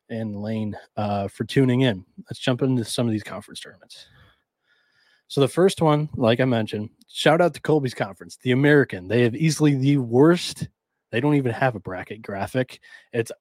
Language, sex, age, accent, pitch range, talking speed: English, male, 20-39, American, 110-140 Hz, 185 wpm